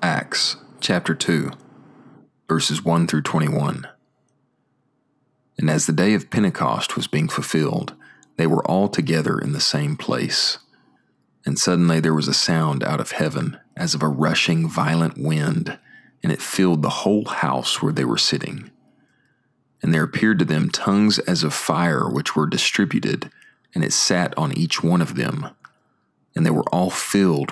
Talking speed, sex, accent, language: 160 wpm, male, American, English